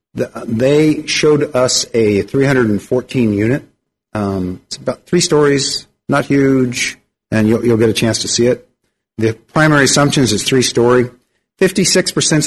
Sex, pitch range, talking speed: male, 100-135 Hz, 145 wpm